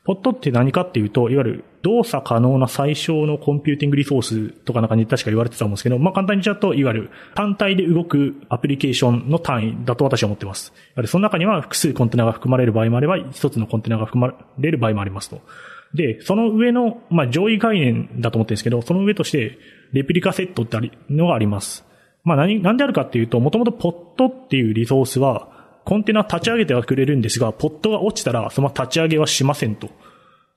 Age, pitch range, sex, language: 30-49, 115-180 Hz, male, Japanese